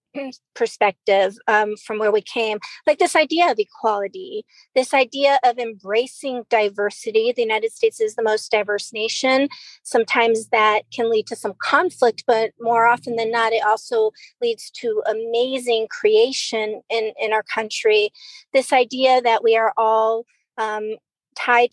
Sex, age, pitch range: female, 40-59, 220-265 Hz